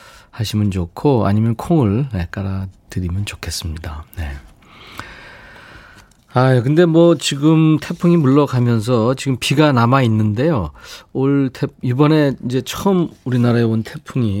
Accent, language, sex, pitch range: native, Korean, male, 100-145 Hz